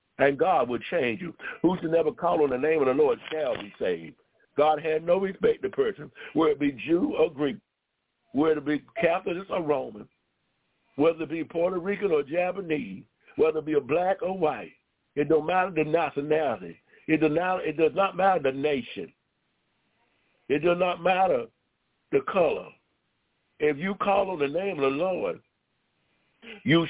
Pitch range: 160-205 Hz